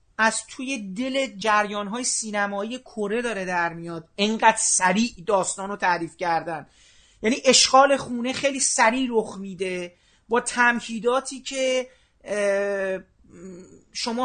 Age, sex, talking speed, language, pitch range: 40-59, male, 110 wpm, Persian, 205-270 Hz